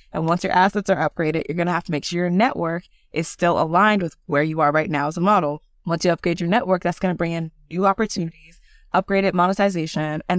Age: 20-39